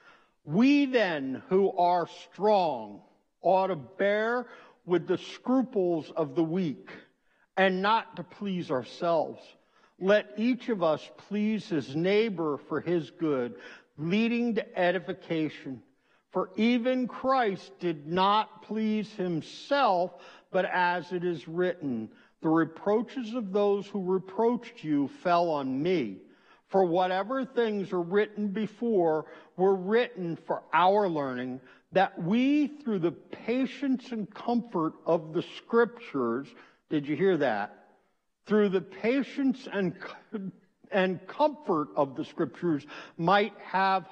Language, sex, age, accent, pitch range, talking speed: English, male, 60-79, American, 170-220 Hz, 120 wpm